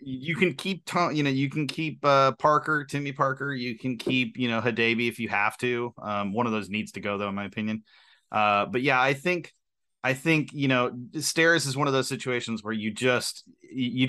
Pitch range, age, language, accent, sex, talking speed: 105-130 Hz, 30-49, English, American, male, 225 wpm